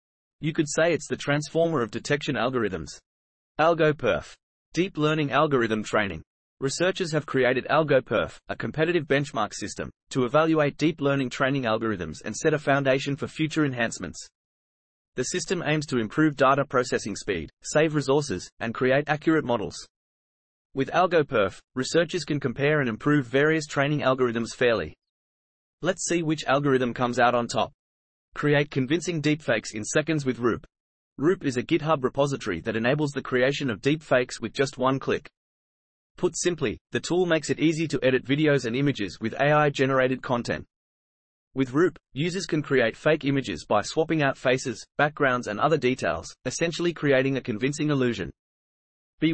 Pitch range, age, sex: 120-155 Hz, 30-49, male